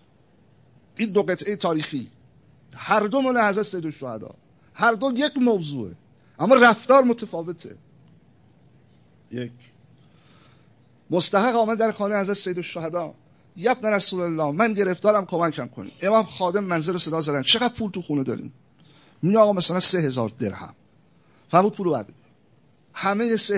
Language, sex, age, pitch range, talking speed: Persian, male, 50-69, 125-180 Hz, 130 wpm